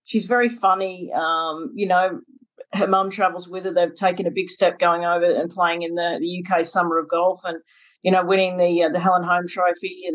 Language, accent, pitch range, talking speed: English, Australian, 170-190 Hz, 225 wpm